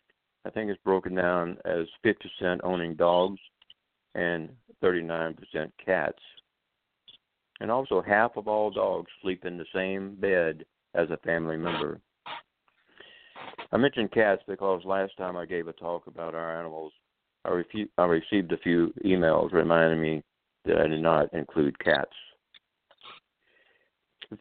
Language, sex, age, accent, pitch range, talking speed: English, male, 50-69, American, 85-95 Hz, 135 wpm